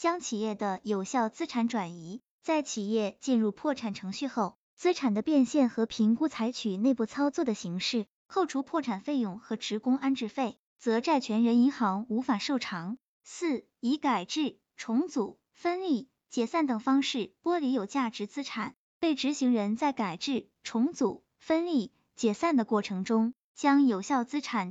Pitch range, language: 215-280 Hz, Chinese